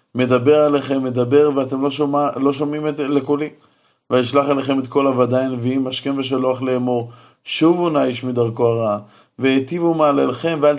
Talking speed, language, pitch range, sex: 140 wpm, Hebrew, 120-140 Hz, male